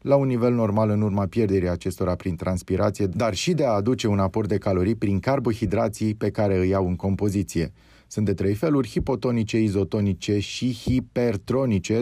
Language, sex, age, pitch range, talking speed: Romanian, male, 30-49, 95-120 Hz, 175 wpm